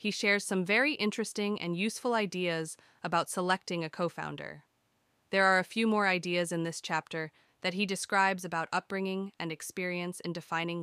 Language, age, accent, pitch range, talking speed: English, 20-39, American, 160-185 Hz, 165 wpm